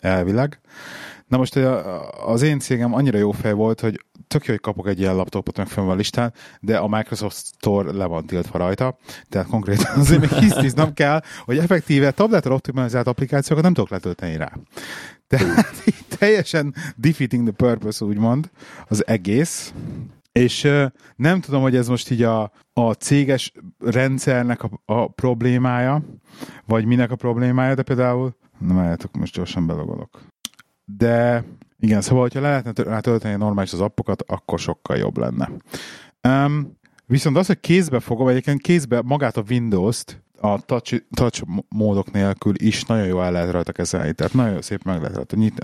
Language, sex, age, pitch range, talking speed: Hungarian, male, 30-49, 105-135 Hz, 160 wpm